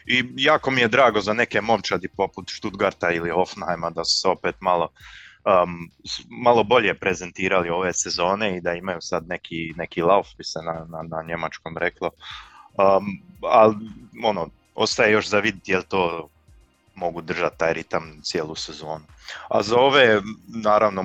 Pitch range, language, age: 85-110 Hz, Croatian, 20-39